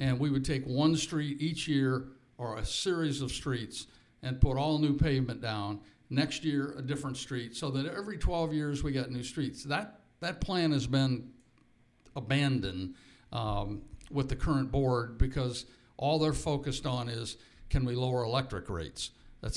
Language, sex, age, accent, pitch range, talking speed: English, male, 50-69, American, 120-150 Hz, 170 wpm